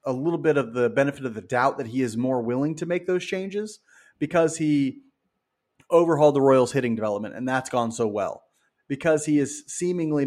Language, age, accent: English, 30-49, American